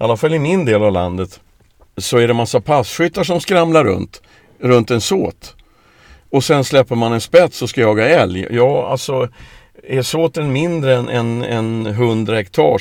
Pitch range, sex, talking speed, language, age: 100-130 Hz, male, 190 wpm, Swedish, 50-69